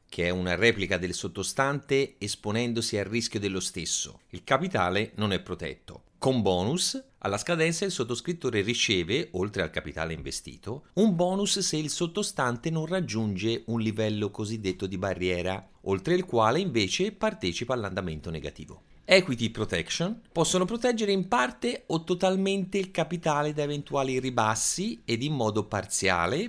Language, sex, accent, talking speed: Italian, male, native, 145 wpm